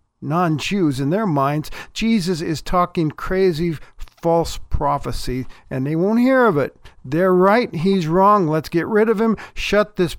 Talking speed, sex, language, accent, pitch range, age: 160 wpm, male, English, American, 135-190 Hz, 50-69